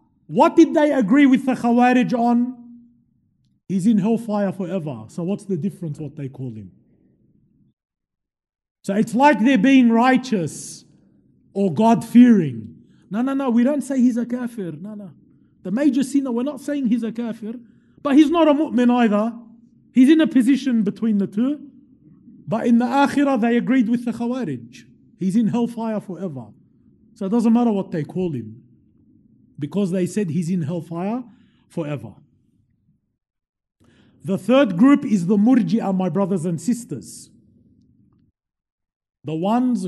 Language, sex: English, male